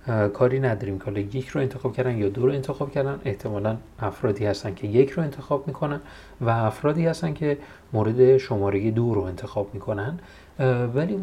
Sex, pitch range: male, 105-145 Hz